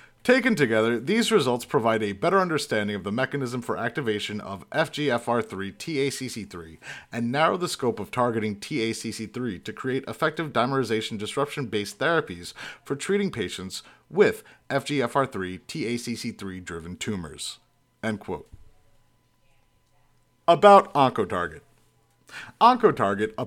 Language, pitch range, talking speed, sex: English, 110-165 Hz, 100 wpm, male